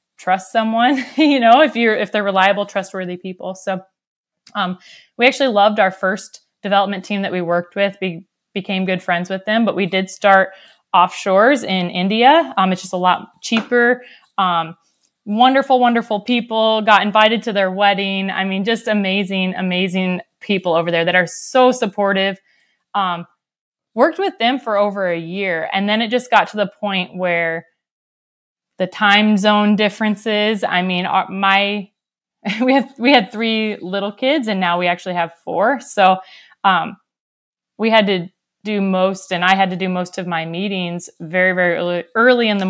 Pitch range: 180-215 Hz